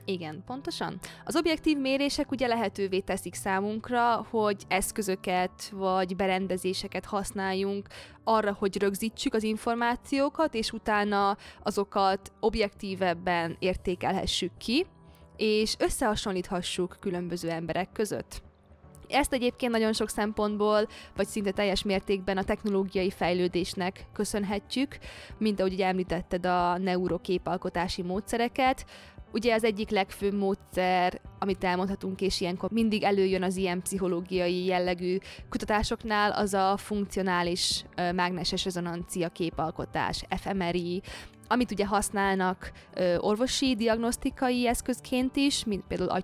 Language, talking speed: Hungarian, 105 wpm